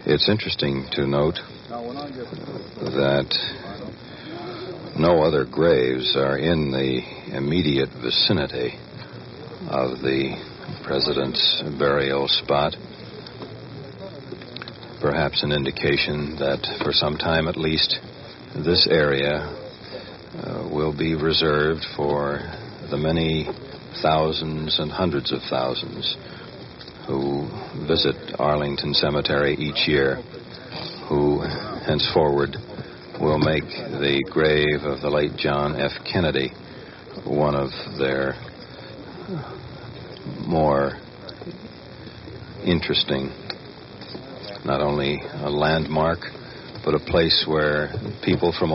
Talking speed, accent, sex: 90 wpm, American, male